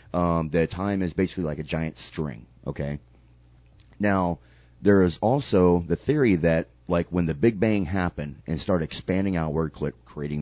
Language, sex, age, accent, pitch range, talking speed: English, male, 30-49, American, 75-95 Hz, 160 wpm